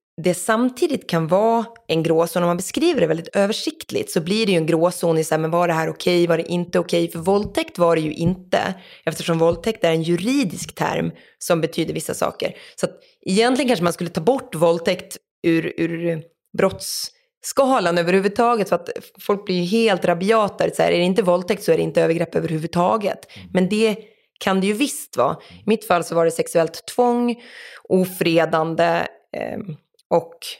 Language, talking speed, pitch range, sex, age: Swedish, 180 wpm, 170-230 Hz, female, 20-39